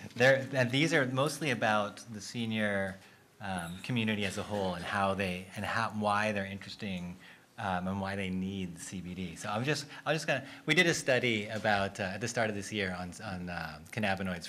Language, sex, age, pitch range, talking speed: English, male, 30-49, 95-120 Hz, 205 wpm